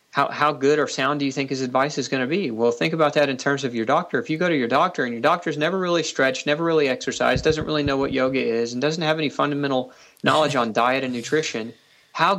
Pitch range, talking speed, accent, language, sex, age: 125-155 Hz, 265 wpm, American, English, male, 40-59